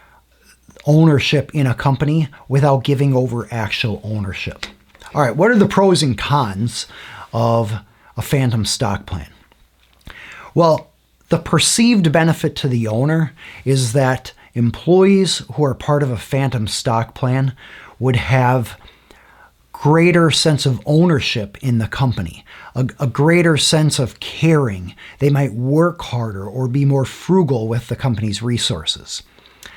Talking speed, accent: 135 wpm, American